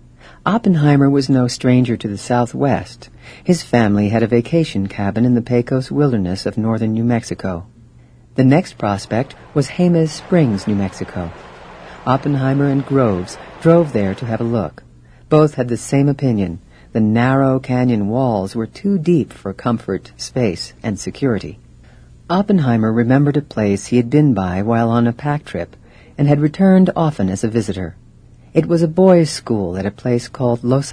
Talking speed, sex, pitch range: 165 wpm, female, 100-140 Hz